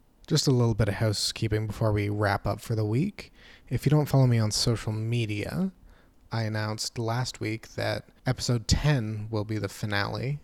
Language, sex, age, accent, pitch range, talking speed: English, male, 30-49, American, 110-130 Hz, 185 wpm